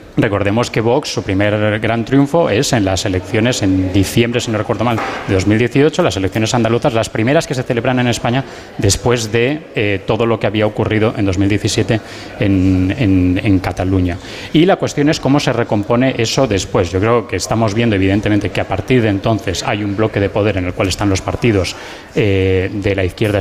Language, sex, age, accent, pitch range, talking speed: Spanish, male, 20-39, Spanish, 100-125 Hz, 195 wpm